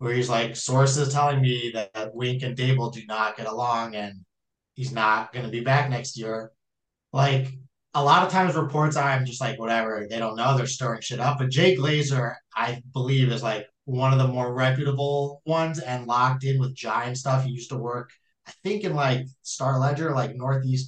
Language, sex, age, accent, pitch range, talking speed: English, male, 20-39, American, 120-145 Hz, 200 wpm